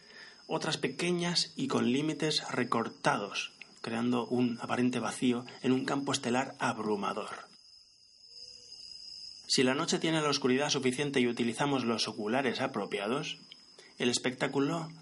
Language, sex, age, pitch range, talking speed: Spanish, male, 30-49, 120-140 Hz, 115 wpm